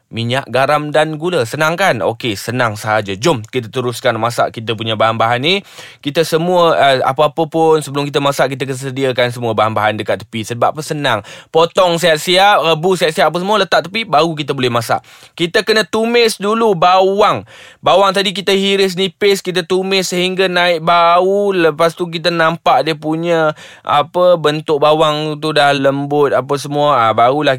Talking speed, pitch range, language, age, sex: 165 wpm, 130-175 Hz, Malay, 20-39, male